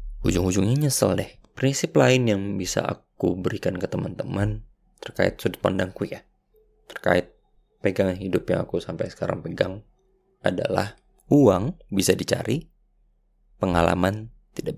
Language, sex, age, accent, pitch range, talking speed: Indonesian, male, 20-39, native, 90-115 Hz, 120 wpm